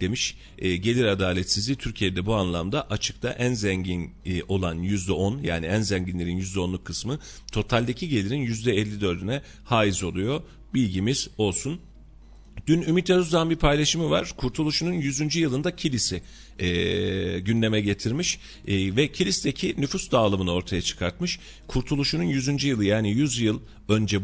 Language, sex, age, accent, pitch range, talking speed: Turkish, male, 40-59, native, 95-140 Hz, 140 wpm